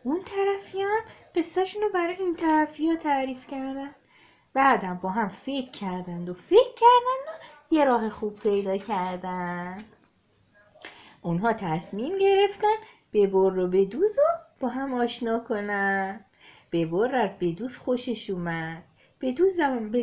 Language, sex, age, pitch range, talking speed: Persian, female, 30-49, 190-315 Hz, 125 wpm